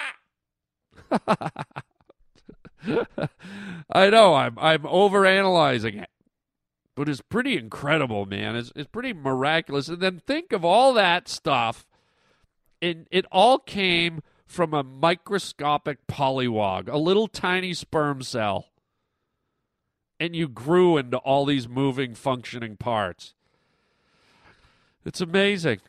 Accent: American